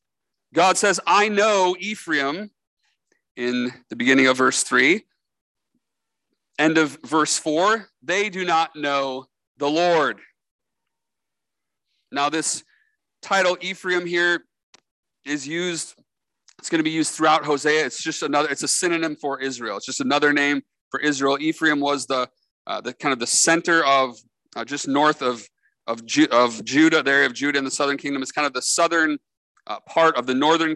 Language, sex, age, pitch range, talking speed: English, male, 40-59, 130-165 Hz, 165 wpm